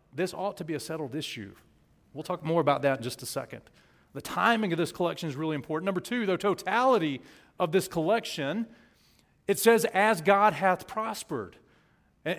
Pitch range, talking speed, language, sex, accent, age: 170-230 Hz, 185 wpm, English, male, American, 40-59